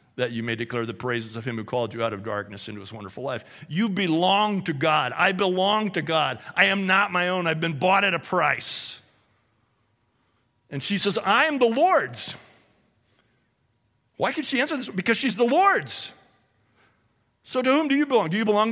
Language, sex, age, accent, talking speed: English, male, 50-69, American, 200 wpm